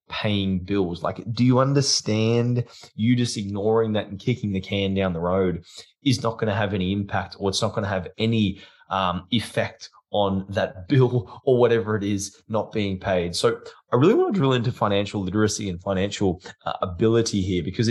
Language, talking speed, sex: English, 195 wpm, male